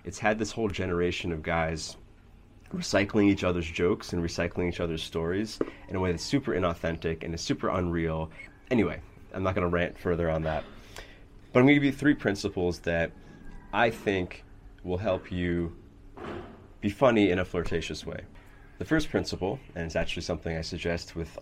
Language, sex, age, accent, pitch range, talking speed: English, male, 30-49, American, 85-105 Hz, 175 wpm